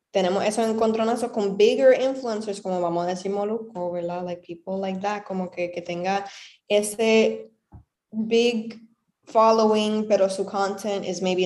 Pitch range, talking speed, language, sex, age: 185-225 Hz, 145 wpm, Spanish, female, 10-29